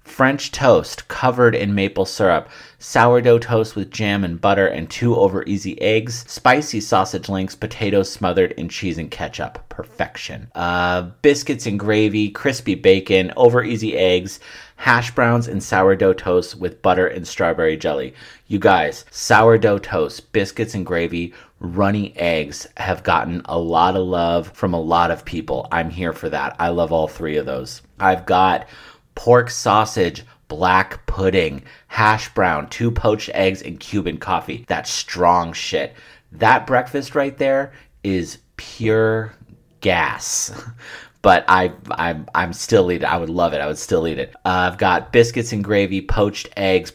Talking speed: 160 wpm